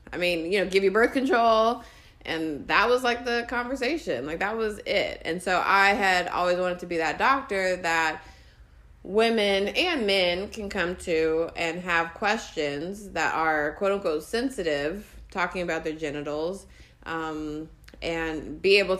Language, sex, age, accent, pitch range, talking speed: English, female, 20-39, American, 160-195 Hz, 160 wpm